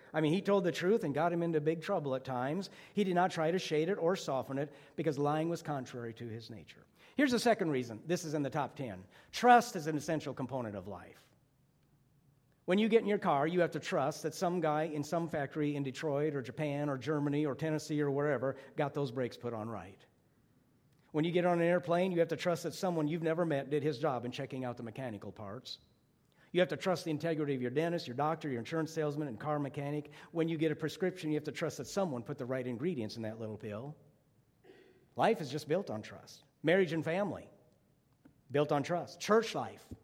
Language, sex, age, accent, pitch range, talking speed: English, male, 50-69, American, 135-170 Hz, 230 wpm